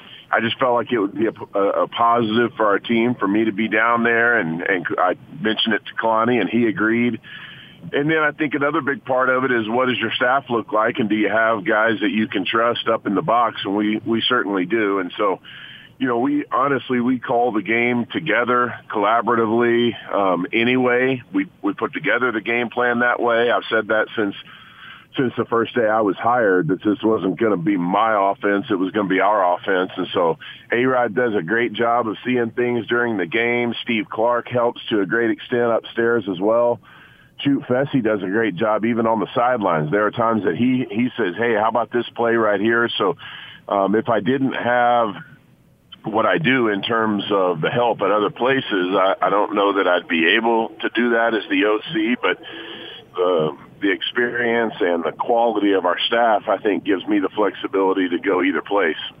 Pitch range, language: 110-125 Hz, English